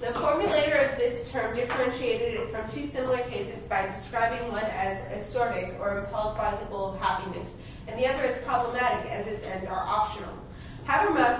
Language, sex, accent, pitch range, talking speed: English, female, American, 210-265 Hz, 180 wpm